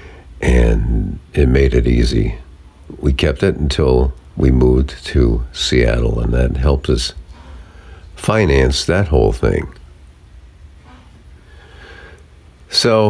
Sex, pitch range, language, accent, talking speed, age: male, 65-80 Hz, English, American, 100 wpm, 50-69